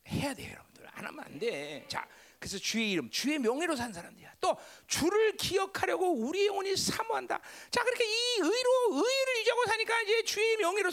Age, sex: 40-59, male